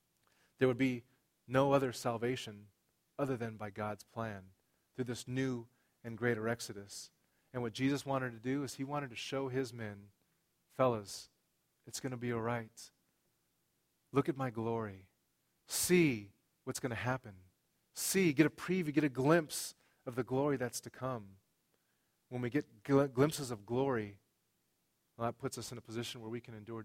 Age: 30-49